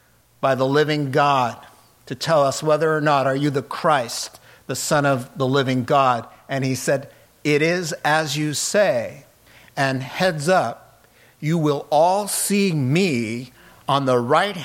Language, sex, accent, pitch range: English, male, American, 125-155 Hz